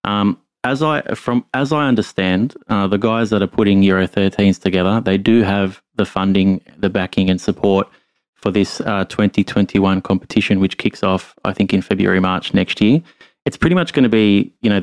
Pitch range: 95-110 Hz